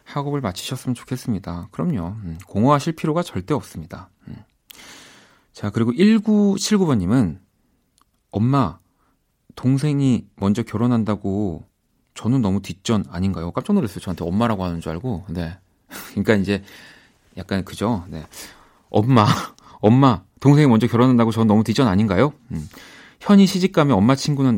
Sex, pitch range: male, 95-130 Hz